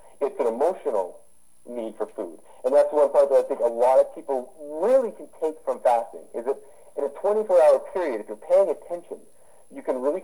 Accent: American